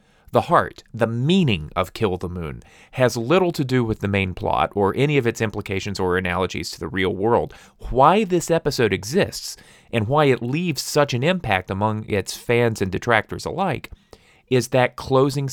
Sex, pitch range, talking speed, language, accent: male, 100-140 Hz, 180 wpm, English, American